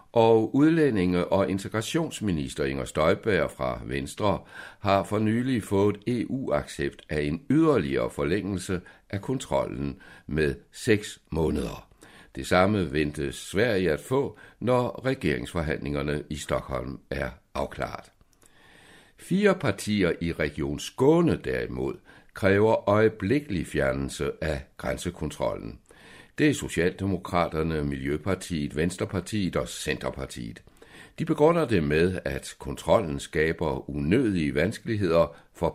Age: 60-79